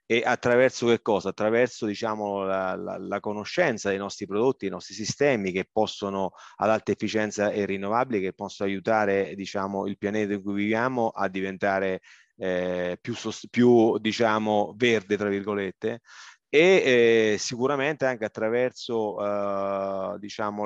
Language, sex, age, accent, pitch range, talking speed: Italian, male, 30-49, native, 100-120 Hz, 140 wpm